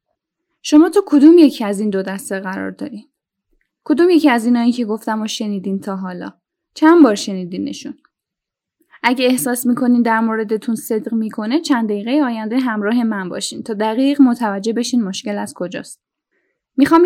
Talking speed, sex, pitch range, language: 160 wpm, female, 215-285 Hz, Persian